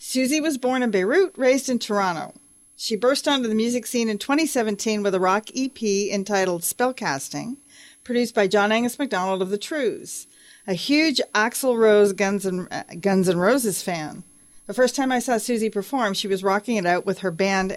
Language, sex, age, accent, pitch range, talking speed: English, female, 40-59, American, 195-255 Hz, 190 wpm